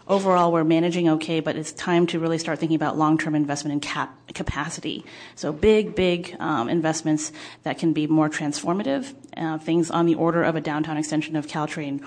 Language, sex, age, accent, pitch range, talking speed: English, female, 30-49, American, 155-170 Hz, 190 wpm